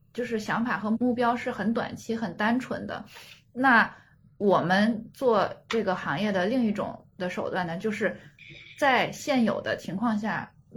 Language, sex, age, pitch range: Chinese, female, 10-29, 195-250 Hz